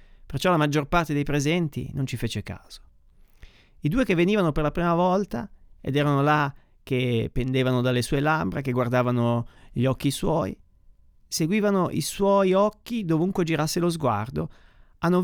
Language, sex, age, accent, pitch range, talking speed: Italian, male, 30-49, native, 115-150 Hz, 160 wpm